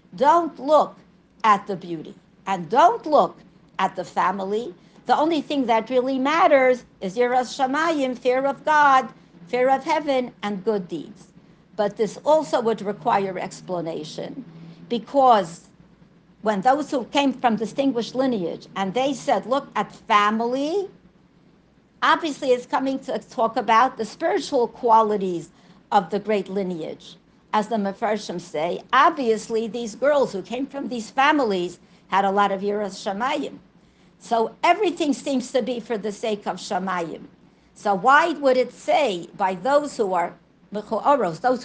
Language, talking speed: English, 145 wpm